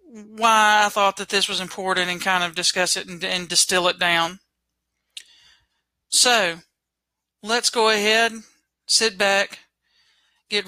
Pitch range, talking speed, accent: 175-200 Hz, 135 wpm, American